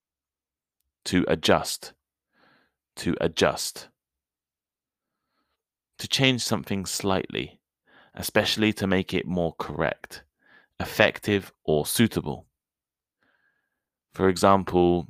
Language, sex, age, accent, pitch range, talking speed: English, male, 20-39, British, 75-95 Hz, 75 wpm